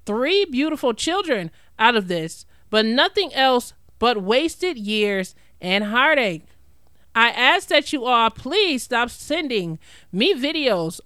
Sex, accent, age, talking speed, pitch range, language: male, American, 30-49, 130 wpm, 185-245 Hz, English